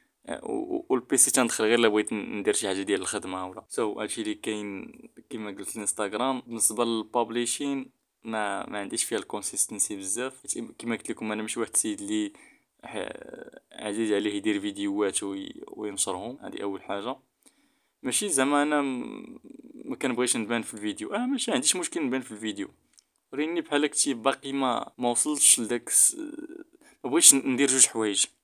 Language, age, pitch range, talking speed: Arabic, 20-39, 110-160 Hz, 150 wpm